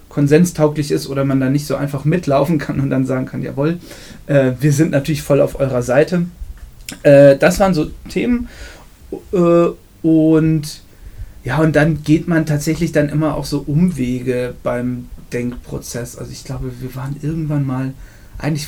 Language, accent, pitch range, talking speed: German, German, 140-165 Hz, 165 wpm